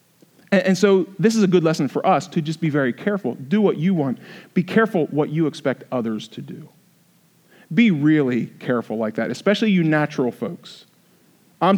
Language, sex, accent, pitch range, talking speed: English, male, American, 155-210 Hz, 185 wpm